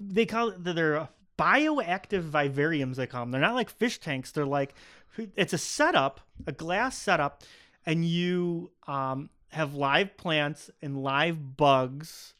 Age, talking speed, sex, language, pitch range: 30-49, 155 wpm, male, English, 135-160 Hz